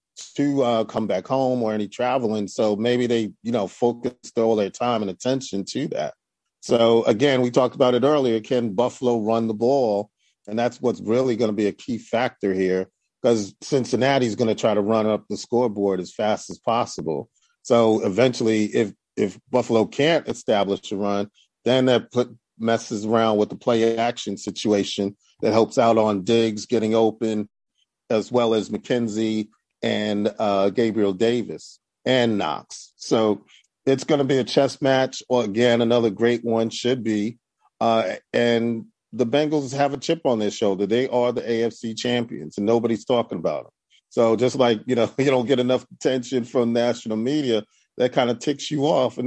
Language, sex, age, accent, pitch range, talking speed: English, male, 40-59, American, 110-125 Hz, 180 wpm